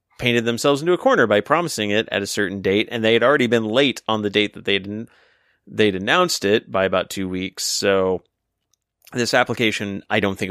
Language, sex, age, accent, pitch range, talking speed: English, male, 30-49, American, 105-130 Hz, 210 wpm